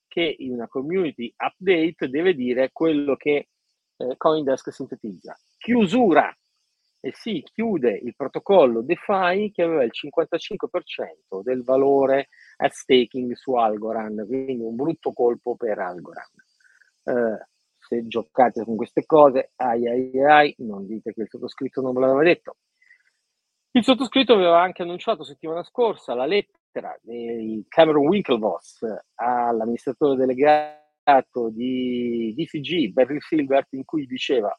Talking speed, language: 130 wpm, Italian